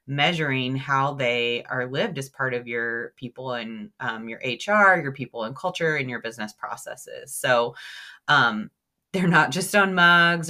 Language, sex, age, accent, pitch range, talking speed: English, female, 30-49, American, 125-165 Hz, 165 wpm